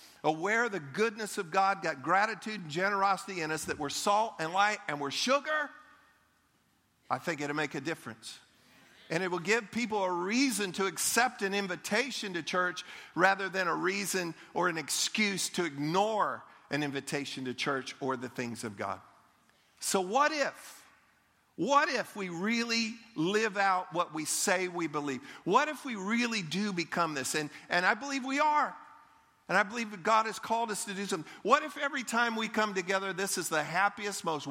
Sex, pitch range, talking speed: male, 165-220 Hz, 185 wpm